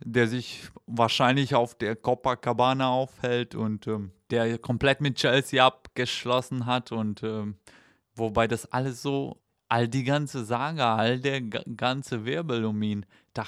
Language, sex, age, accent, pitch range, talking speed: German, male, 20-39, German, 115-135 Hz, 145 wpm